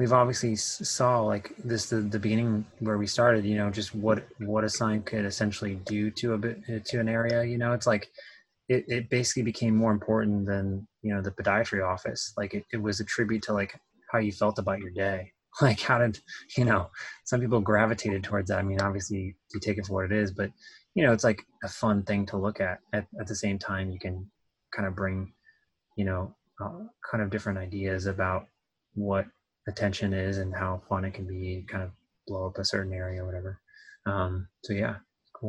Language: English